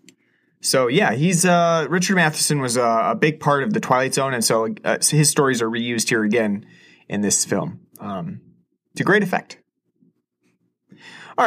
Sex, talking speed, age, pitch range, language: male, 165 wpm, 30-49, 125-175 Hz, English